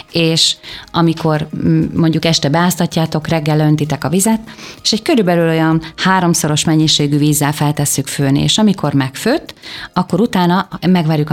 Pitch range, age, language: 150-170 Hz, 30-49, Hungarian